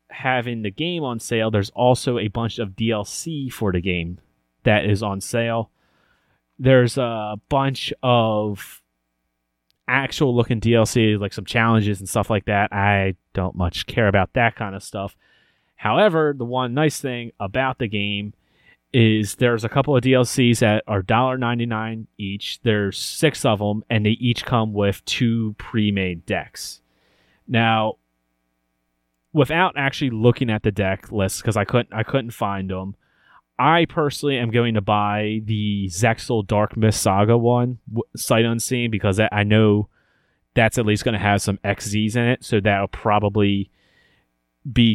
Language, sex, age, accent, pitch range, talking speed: English, male, 30-49, American, 100-120 Hz, 155 wpm